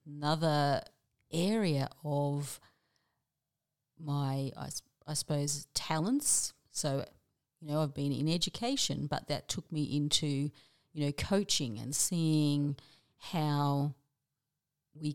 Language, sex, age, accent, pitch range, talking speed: English, female, 30-49, Australian, 140-160 Hz, 105 wpm